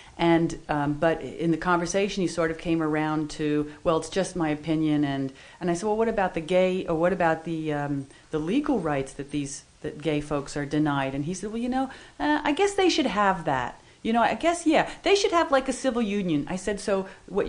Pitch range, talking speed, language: 150-200 Hz, 235 wpm, English